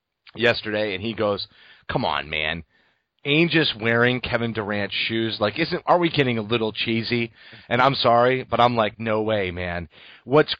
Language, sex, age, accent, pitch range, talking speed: English, male, 30-49, American, 105-130 Hz, 175 wpm